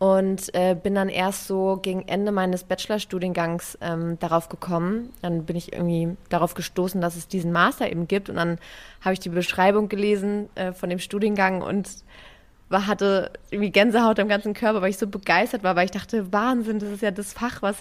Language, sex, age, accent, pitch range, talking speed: German, female, 20-39, German, 175-205 Hz, 200 wpm